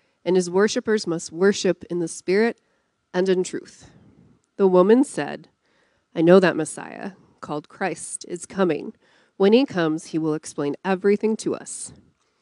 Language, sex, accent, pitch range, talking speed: English, female, American, 165-205 Hz, 150 wpm